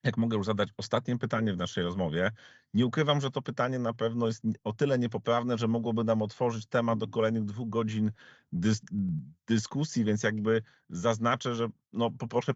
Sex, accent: male, native